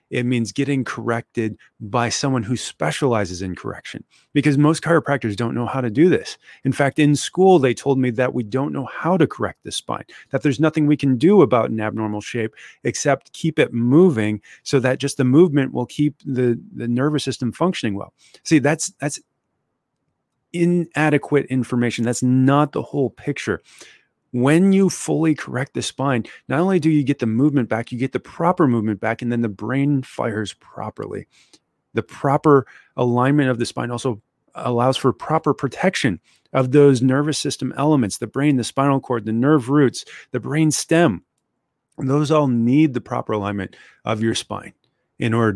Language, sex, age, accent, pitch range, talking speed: English, male, 30-49, American, 115-145 Hz, 180 wpm